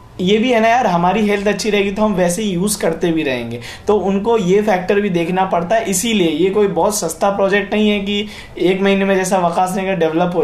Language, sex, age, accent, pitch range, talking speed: Hindi, male, 20-39, native, 180-215 Hz, 240 wpm